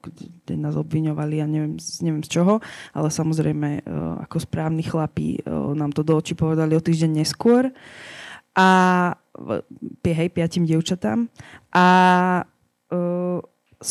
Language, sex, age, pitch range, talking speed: Slovak, female, 20-39, 155-170 Hz, 110 wpm